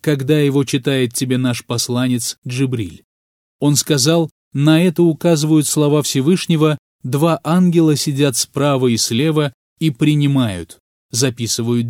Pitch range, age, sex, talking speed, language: 120-155 Hz, 30-49, male, 115 wpm, Russian